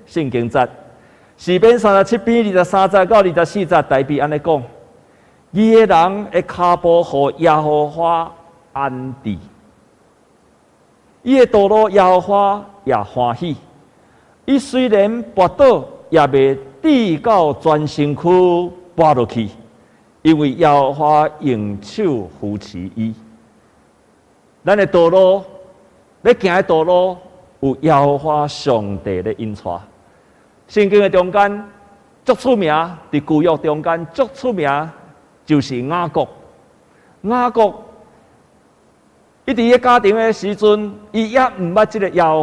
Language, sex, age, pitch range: Chinese, male, 50-69, 145-210 Hz